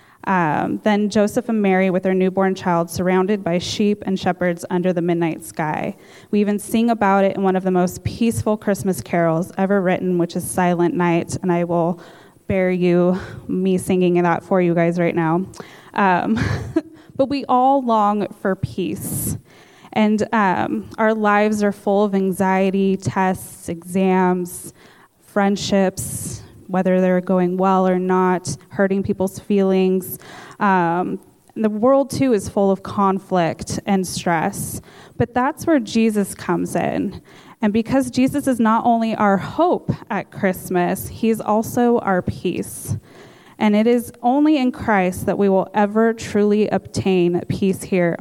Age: 20-39